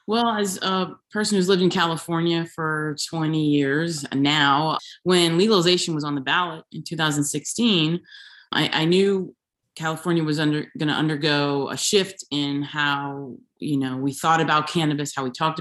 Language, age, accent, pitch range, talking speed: English, 30-49, American, 140-180 Hz, 160 wpm